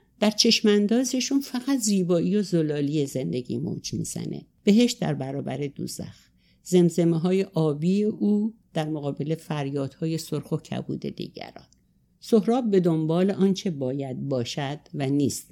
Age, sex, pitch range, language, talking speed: 60-79, female, 155-195 Hz, Persian, 120 wpm